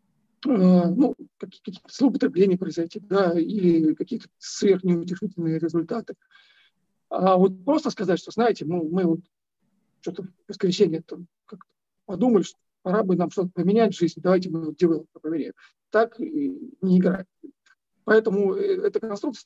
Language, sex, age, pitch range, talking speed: Russian, male, 50-69, 175-225 Hz, 130 wpm